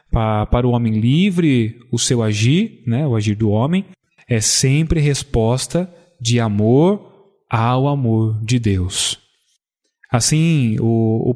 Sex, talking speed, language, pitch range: male, 125 wpm, Portuguese, 120-170 Hz